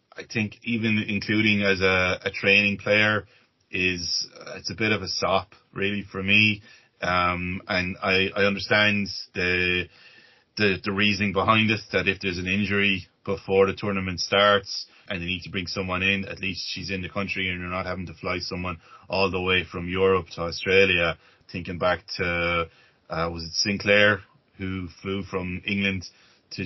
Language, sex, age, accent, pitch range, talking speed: English, male, 20-39, Irish, 90-105 Hz, 175 wpm